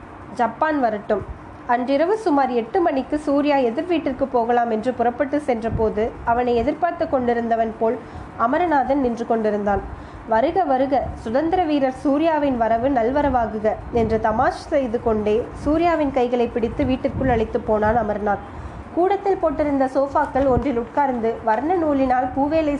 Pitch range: 235-295 Hz